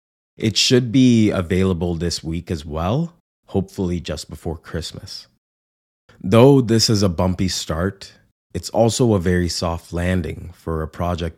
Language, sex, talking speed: English, male, 140 wpm